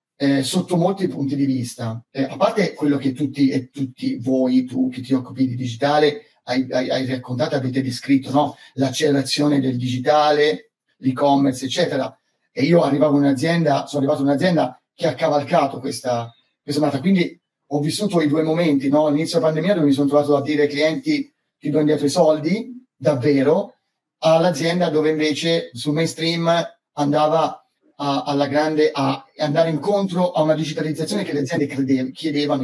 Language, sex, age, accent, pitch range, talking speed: Italian, male, 30-49, native, 135-165 Hz, 165 wpm